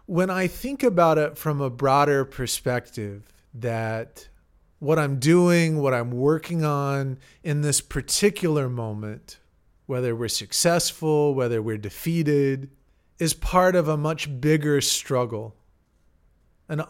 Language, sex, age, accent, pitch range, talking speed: English, male, 40-59, American, 120-155 Hz, 125 wpm